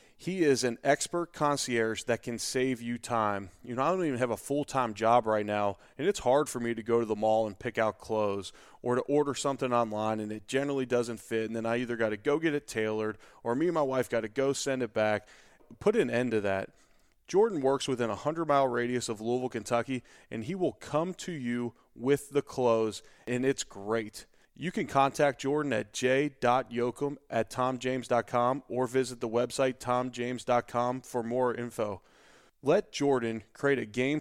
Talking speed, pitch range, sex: 200 wpm, 115-140 Hz, male